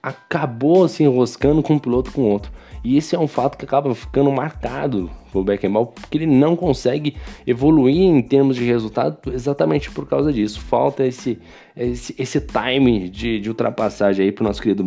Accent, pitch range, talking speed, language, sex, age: Brazilian, 110-135 Hz, 180 wpm, Portuguese, male, 20-39